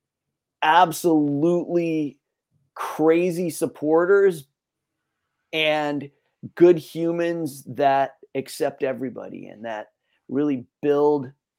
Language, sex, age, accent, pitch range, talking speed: English, male, 30-49, American, 135-170 Hz, 65 wpm